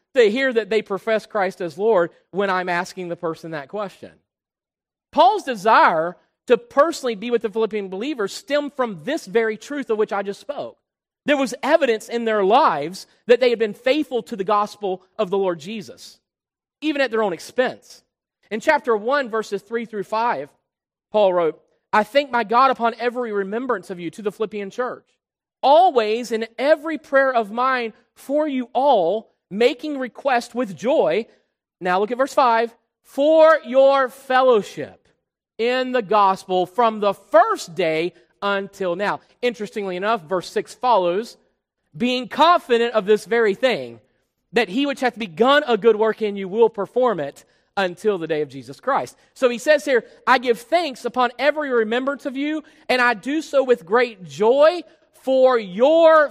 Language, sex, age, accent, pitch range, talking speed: English, male, 40-59, American, 200-265 Hz, 170 wpm